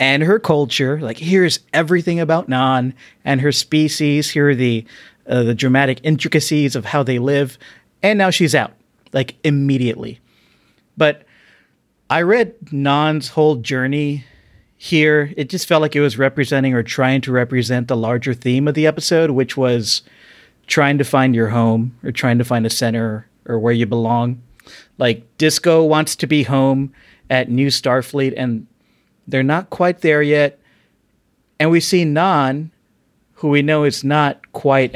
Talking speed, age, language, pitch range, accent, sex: 160 wpm, 40-59, English, 125-150 Hz, American, male